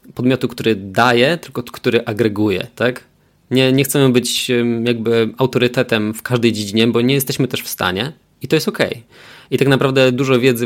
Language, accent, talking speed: Polish, native, 175 wpm